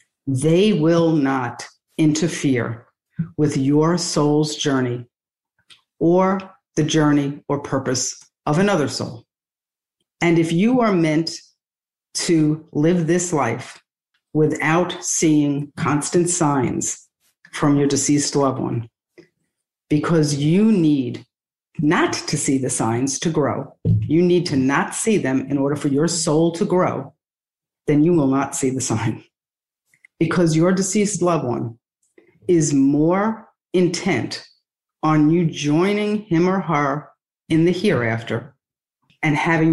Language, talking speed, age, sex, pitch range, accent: English, 125 wpm, 50-69, female, 145-175 Hz, American